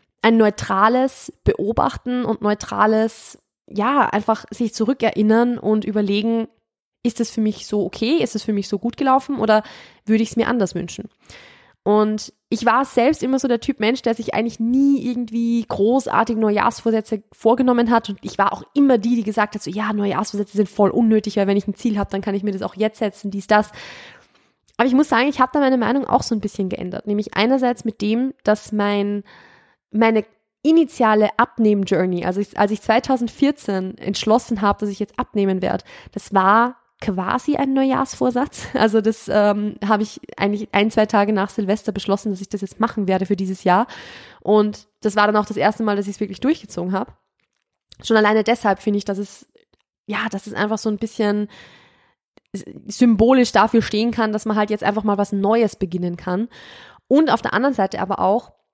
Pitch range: 205-235 Hz